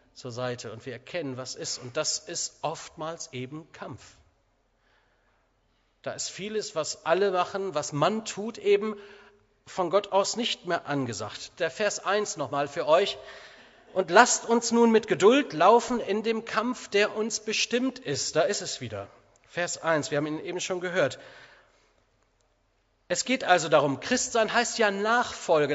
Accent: German